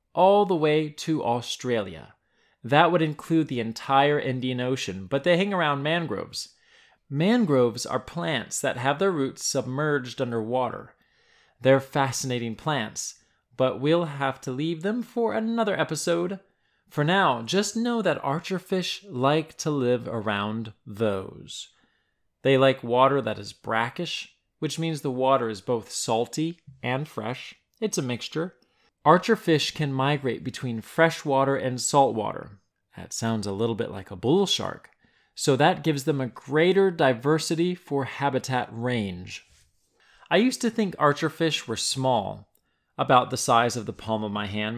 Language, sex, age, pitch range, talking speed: English, male, 20-39, 120-160 Hz, 155 wpm